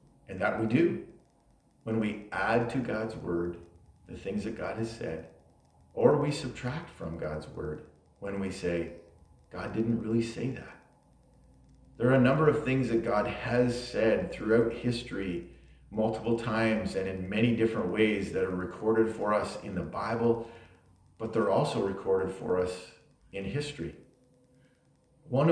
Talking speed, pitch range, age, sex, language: 155 wpm, 85-120 Hz, 40-59, male, English